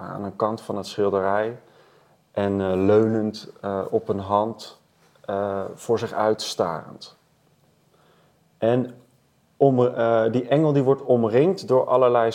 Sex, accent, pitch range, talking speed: male, Dutch, 100-125 Hz, 130 wpm